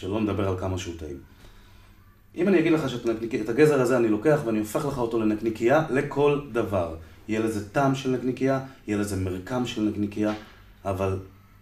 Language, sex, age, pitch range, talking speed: Hebrew, male, 30-49, 100-125 Hz, 175 wpm